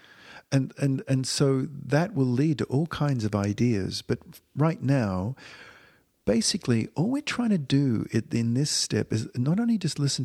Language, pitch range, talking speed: English, 110-140 Hz, 170 wpm